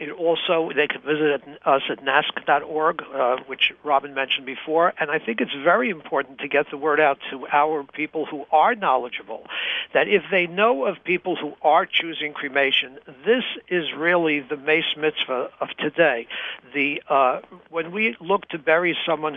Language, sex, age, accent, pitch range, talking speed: English, male, 60-79, American, 145-180 Hz, 175 wpm